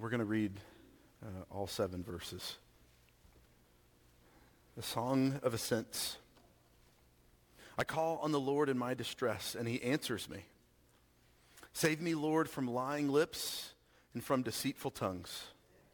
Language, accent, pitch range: English, American, 85-135 Hz